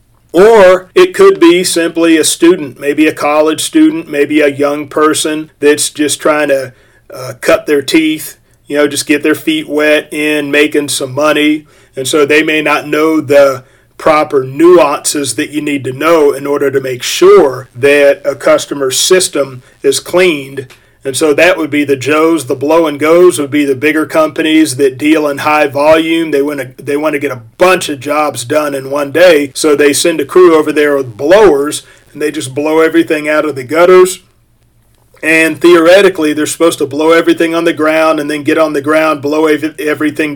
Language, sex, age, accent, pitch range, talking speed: English, male, 40-59, American, 140-160 Hz, 195 wpm